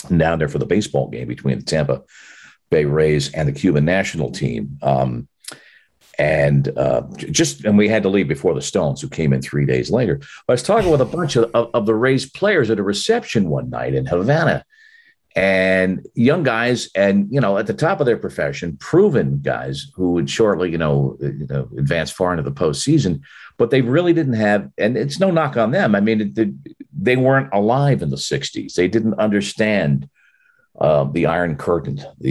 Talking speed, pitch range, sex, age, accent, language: 200 wpm, 70-115 Hz, male, 50-69, American, English